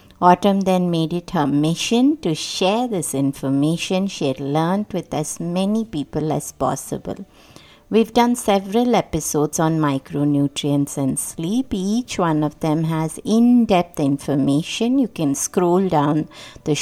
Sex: female